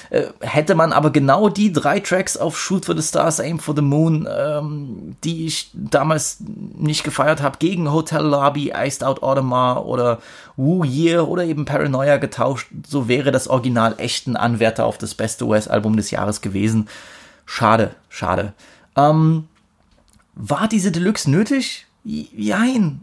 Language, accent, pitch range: German, German, 125-160 Hz